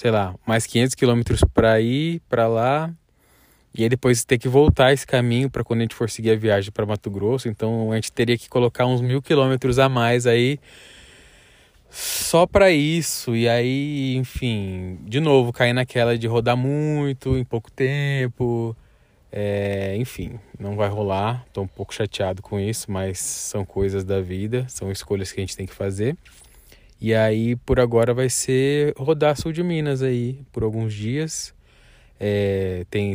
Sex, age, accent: male, 20-39, Brazilian